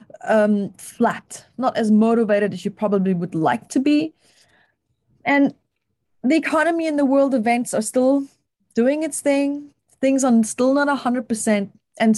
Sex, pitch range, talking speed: female, 205-255 Hz, 160 wpm